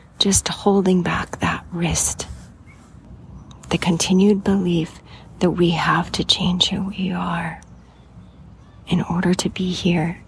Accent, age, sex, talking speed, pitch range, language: American, 30-49, female, 125 wpm, 160-185 Hz, English